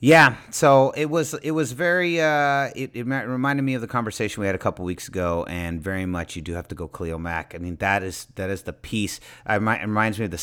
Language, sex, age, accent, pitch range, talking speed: English, male, 30-49, American, 100-155 Hz, 255 wpm